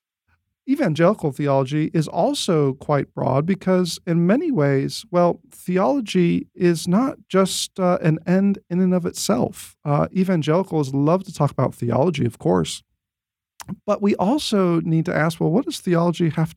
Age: 40-59